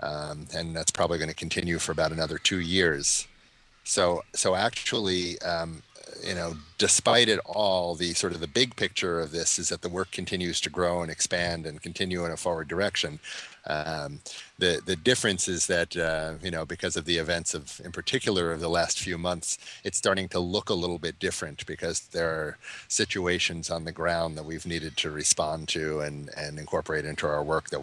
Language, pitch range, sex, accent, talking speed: English, 75-85 Hz, male, American, 200 wpm